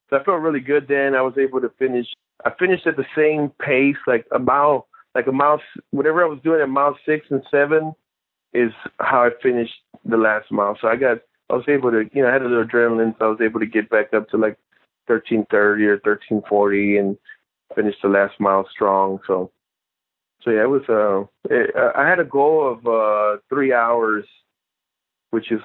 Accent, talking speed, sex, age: American, 205 wpm, male, 20-39